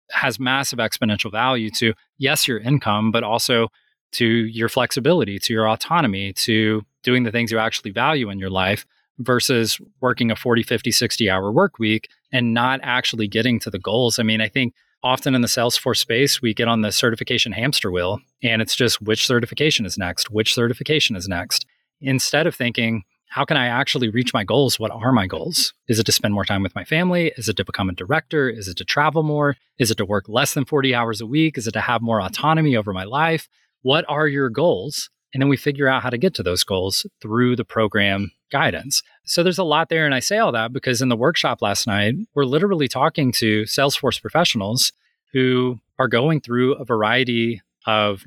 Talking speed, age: 210 wpm, 20-39